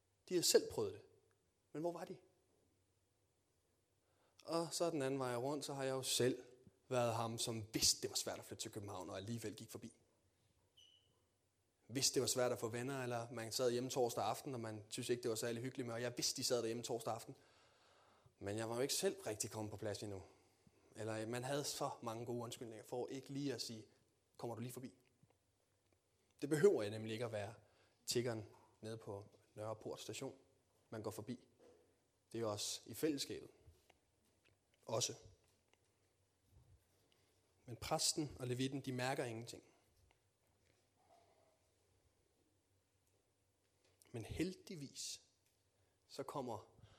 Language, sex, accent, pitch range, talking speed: Danish, male, native, 100-130 Hz, 160 wpm